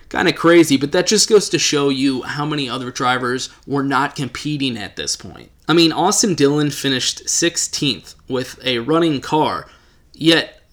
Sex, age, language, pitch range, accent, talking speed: male, 20-39, English, 125-170 Hz, American, 175 wpm